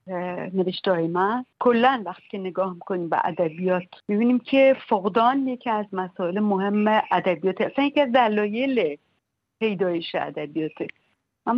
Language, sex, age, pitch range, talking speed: Persian, female, 60-79, 180-215 Hz, 120 wpm